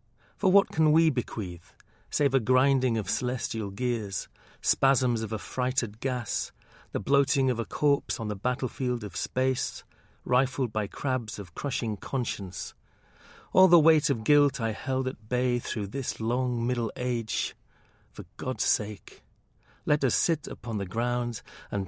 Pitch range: 110-135 Hz